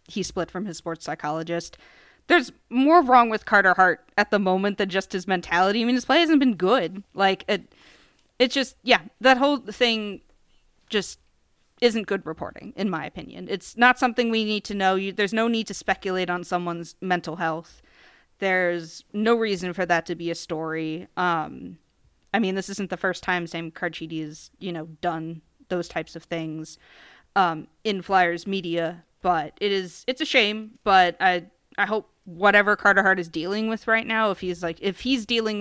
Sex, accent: female, American